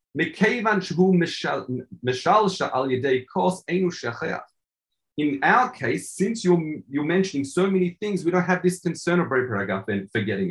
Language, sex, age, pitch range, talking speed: English, male, 40-59, 140-195 Hz, 110 wpm